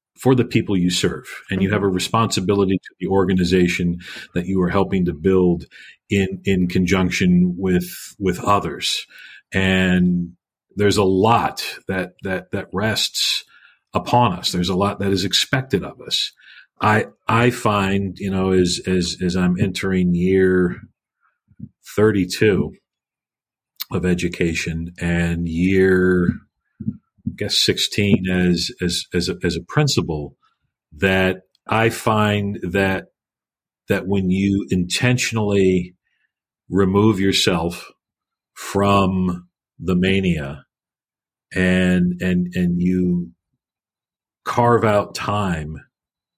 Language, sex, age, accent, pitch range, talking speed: English, male, 40-59, American, 90-100 Hz, 115 wpm